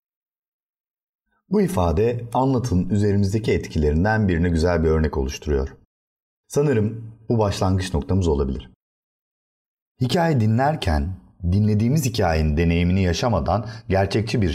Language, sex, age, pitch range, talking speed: Turkish, male, 40-59, 80-105 Hz, 95 wpm